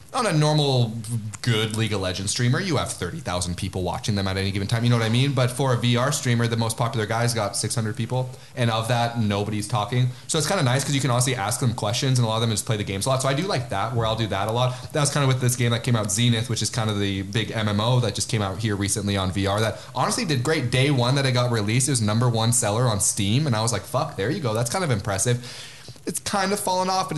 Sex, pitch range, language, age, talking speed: male, 105-130 Hz, English, 30-49, 300 wpm